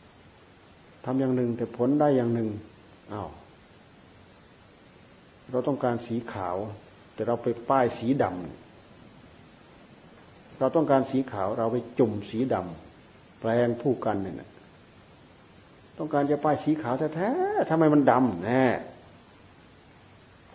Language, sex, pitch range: Thai, male, 105-130 Hz